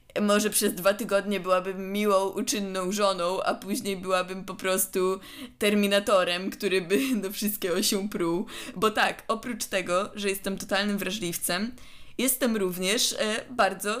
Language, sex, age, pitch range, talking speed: Polish, female, 20-39, 190-245 Hz, 135 wpm